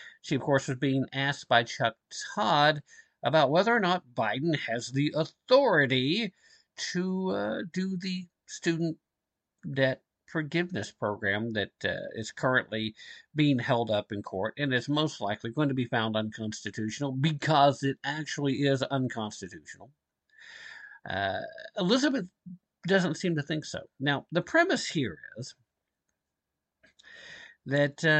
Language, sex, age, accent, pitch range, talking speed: English, male, 50-69, American, 125-180 Hz, 130 wpm